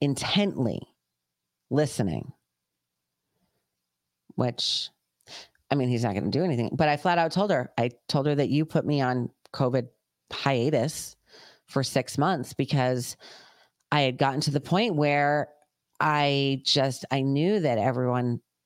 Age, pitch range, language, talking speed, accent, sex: 40-59, 120-150 Hz, English, 140 wpm, American, female